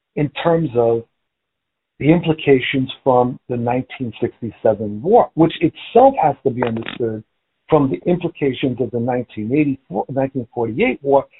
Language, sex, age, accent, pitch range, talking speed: English, male, 60-79, American, 135-215 Hz, 115 wpm